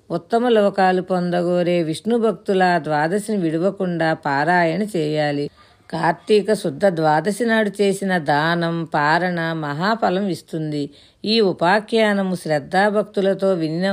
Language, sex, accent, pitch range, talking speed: Telugu, female, native, 155-200 Hz, 90 wpm